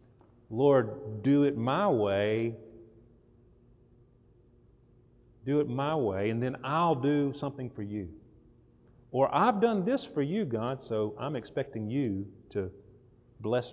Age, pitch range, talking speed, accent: 40-59, 110-140 Hz, 125 wpm, American